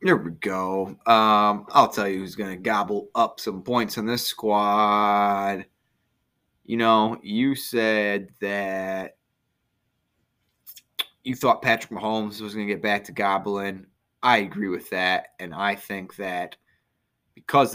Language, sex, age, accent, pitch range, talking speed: English, male, 20-39, American, 100-110 Hz, 140 wpm